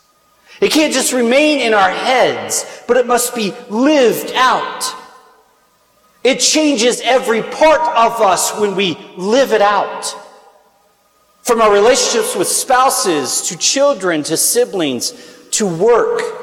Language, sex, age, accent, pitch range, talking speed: English, male, 40-59, American, 195-300 Hz, 130 wpm